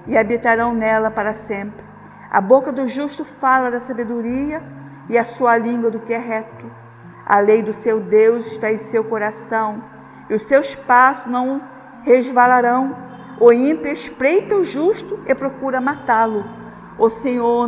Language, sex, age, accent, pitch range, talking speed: Portuguese, female, 50-69, Brazilian, 215-255 Hz, 155 wpm